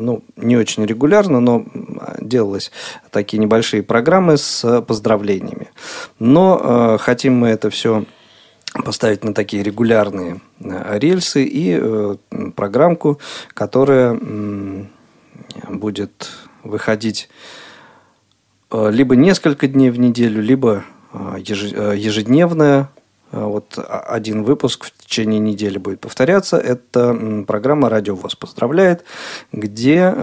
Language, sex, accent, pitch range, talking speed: Russian, male, native, 105-135 Hz, 100 wpm